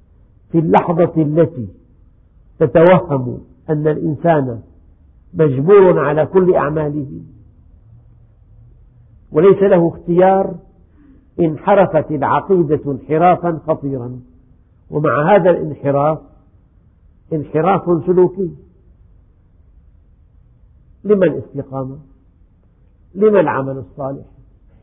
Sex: male